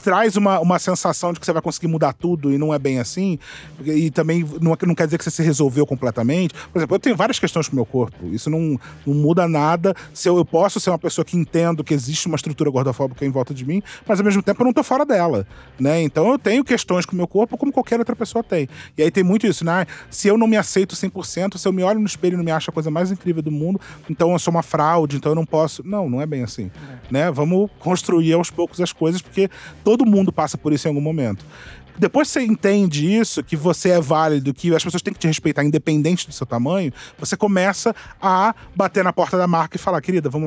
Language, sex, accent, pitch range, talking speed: Portuguese, male, Brazilian, 150-185 Hz, 255 wpm